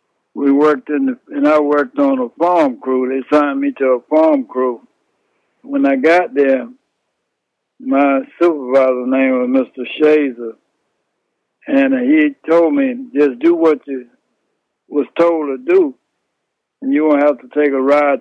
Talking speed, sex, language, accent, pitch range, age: 160 wpm, male, English, American, 130-175 Hz, 60-79